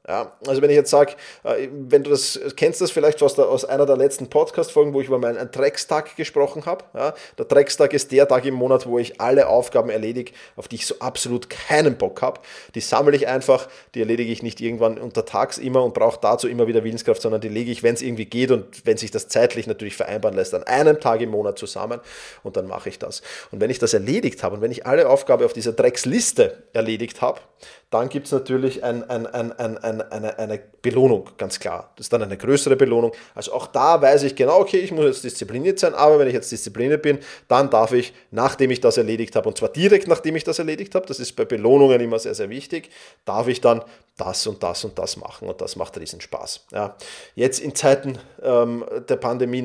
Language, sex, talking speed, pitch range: German, male, 230 wpm, 115-185 Hz